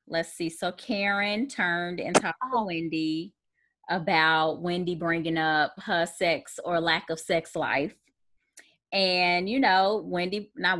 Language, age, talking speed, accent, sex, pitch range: English, 20-39, 140 wpm, American, female, 155-185 Hz